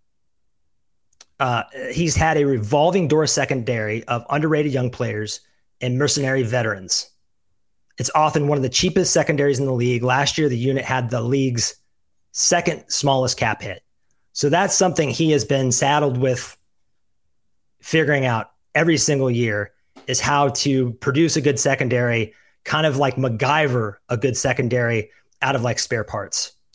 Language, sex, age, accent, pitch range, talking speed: English, male, 30-49, American, 125-155 Hz, 150 wpm